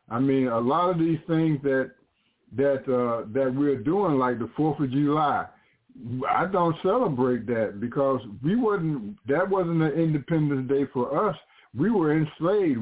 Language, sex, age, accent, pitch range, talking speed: English, male, 50-69, American, 125-150 Hz, 165 wpm